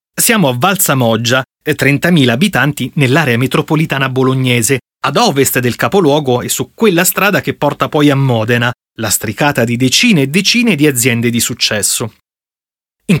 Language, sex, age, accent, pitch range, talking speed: Italian, male, 30-49, native, 130-180 Hz, 150 wpm